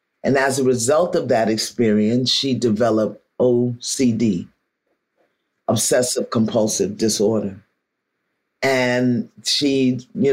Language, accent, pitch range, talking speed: English, American, 120-155 Hz, 95 wpm